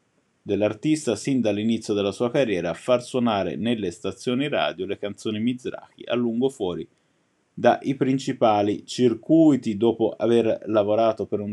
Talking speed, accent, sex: 135 wpm, native, male